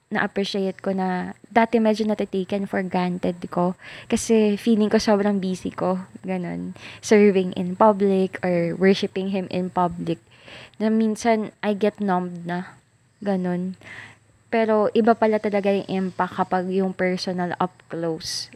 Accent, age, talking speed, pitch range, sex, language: native, 20-39, 135 wpm, 180-230 Hz, female, Filipino